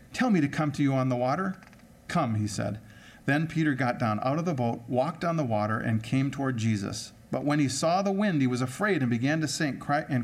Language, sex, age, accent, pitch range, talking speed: English, male, 40-59, American, 115-155 Hz, 245 wpm